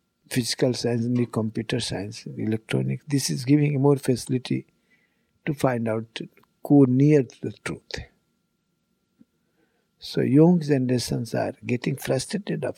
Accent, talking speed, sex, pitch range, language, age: Indian, 115 wpm, male, 110-145 Hz, English, 60-79